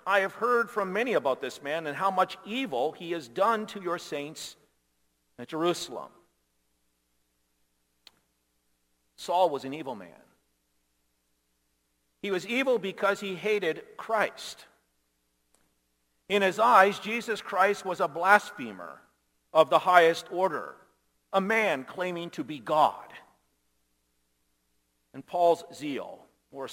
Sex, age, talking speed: male, 50-69, 120 wpm